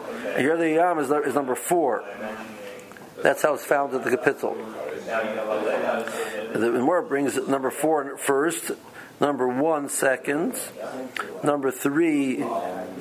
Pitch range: 130-160 Hz